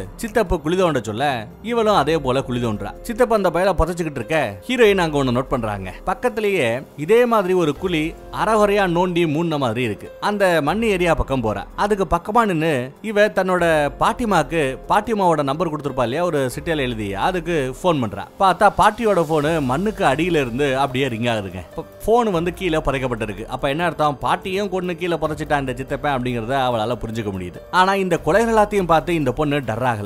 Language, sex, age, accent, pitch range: Tamil, male, 30-49, native, 130-190 Hz